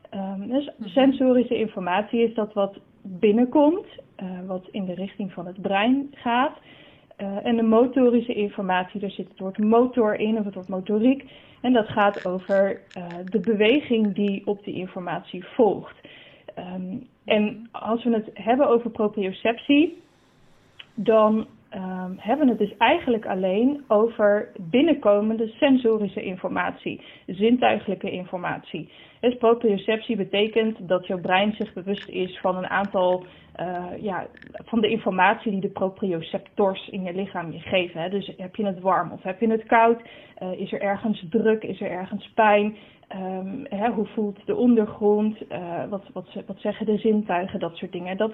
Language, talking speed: Dutch, 155 wpm